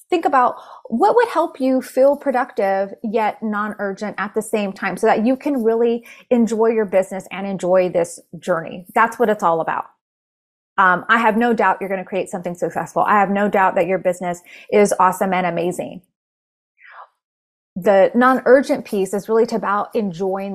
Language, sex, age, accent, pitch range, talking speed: English, female, 20-39, American, 190-255 Hz, 170 wpm